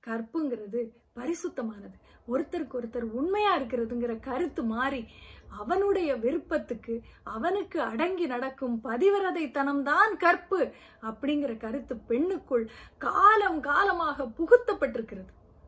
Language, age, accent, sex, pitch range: Tamil, 30-49, native, female, 230-310 Hz